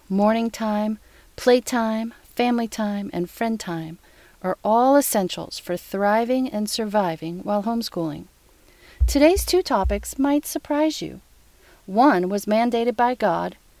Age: 40-59